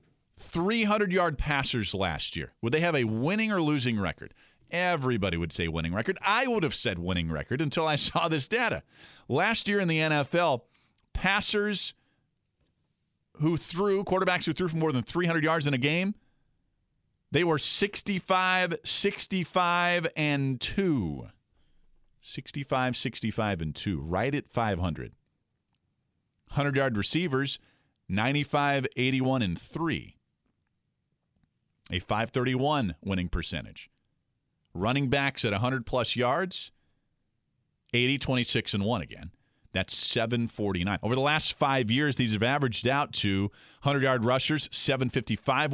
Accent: American